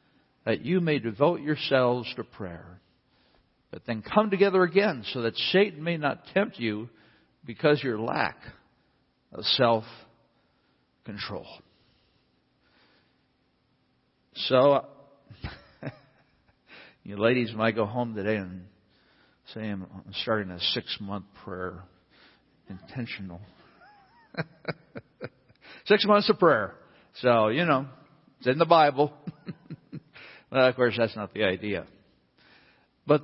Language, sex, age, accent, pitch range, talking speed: English, male, 50-69, American, 115-175 Hz, 110 wpm